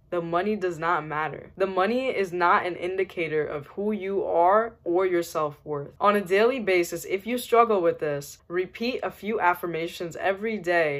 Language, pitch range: English, 160-190 Hz